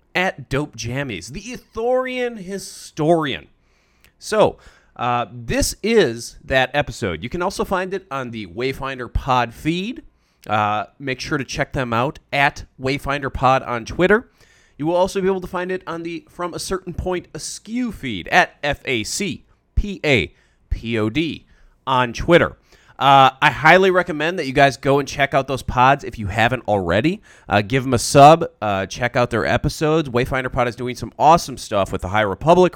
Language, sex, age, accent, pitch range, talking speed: English, male, 30-49, American, 120-175 Hz, 170 wpm